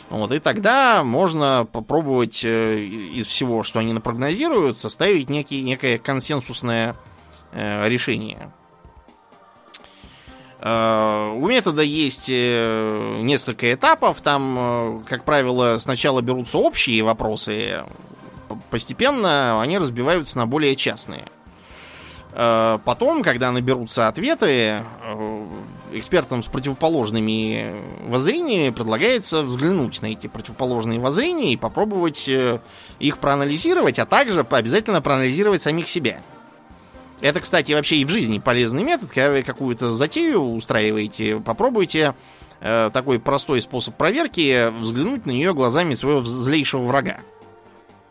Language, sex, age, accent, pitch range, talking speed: Russian, male, 20-39, native, 115-145 Hz, 100 wpm